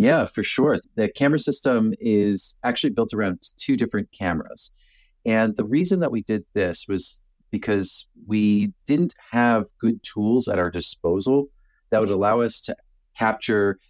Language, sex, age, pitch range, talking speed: English, male, 30-49, 85-115 Hz, 155 wpm